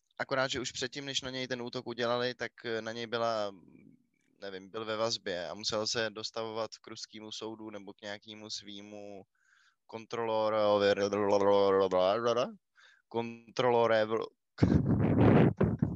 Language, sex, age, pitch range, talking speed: Czech, male, 20-39, 115-140 Hz, 115 wpm